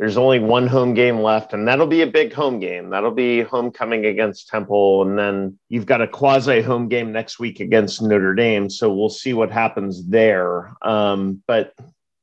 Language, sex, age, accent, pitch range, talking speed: English, male, 40-59, American, 105-130 Hz, 190 wpm